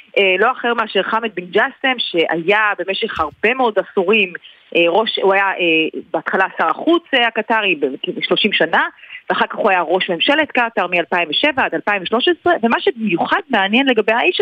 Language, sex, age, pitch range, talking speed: Hebrew, female, 30-49, 200-245 Hz, 145 wpm